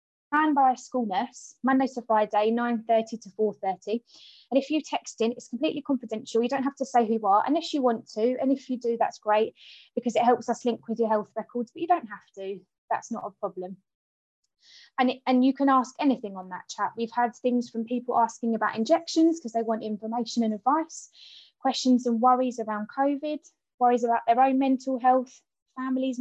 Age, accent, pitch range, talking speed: 20-39, British, 225-270 Hz, 210 wpm